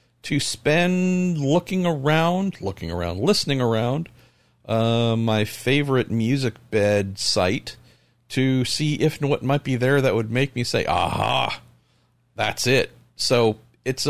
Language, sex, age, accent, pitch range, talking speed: English, male, 50-69, American, 100-130 Hz, 135 wpm